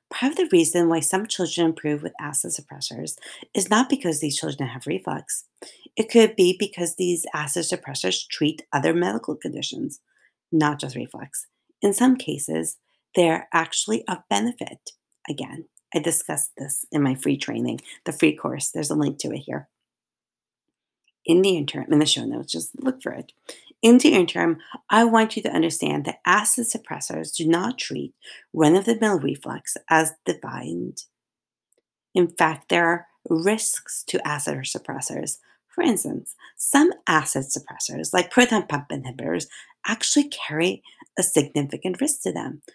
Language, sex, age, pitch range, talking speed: English, female, 40-59, 155-225 Hz, 150 wpm